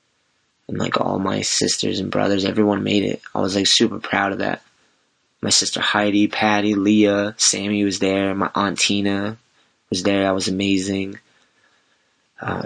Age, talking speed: 20-39, 160 wpm